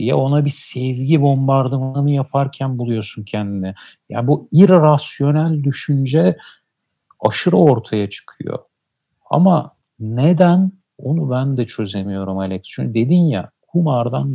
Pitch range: 110-145 Hz